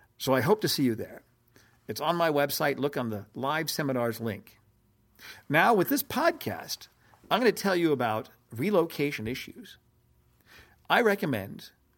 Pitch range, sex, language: 120-160 Hz, male, English